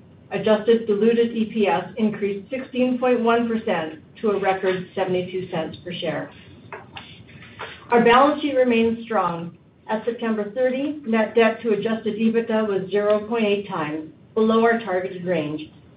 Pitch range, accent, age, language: 180-225 Hz, American, 50-69, English